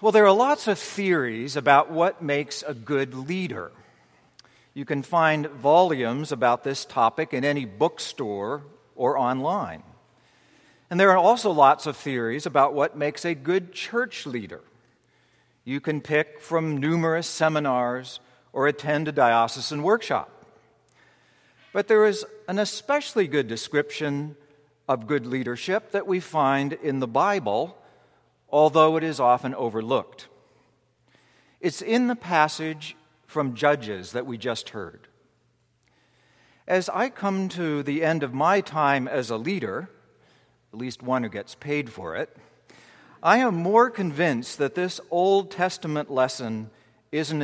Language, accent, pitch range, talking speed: English, American, 130-185 Hz, 140 wpm